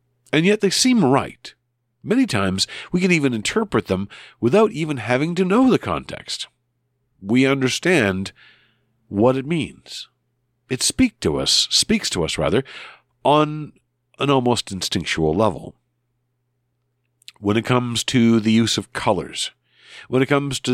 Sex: male